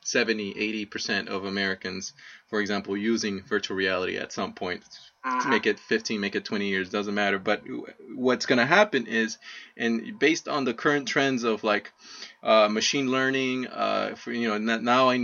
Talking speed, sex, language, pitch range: 185 wpm, male, English, 115-175 Hz